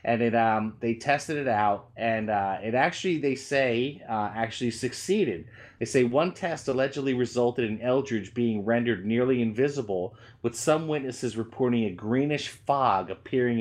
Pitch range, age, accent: 110-130 Hz, 30-49, American